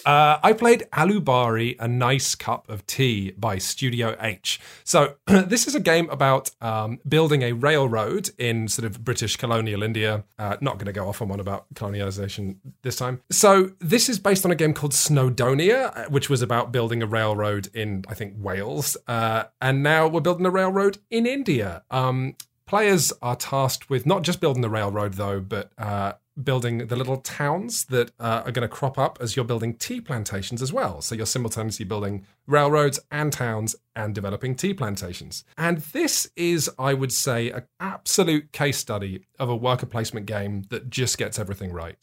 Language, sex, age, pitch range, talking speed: English, male, 30-49, 110-145 Hz, 185 wpm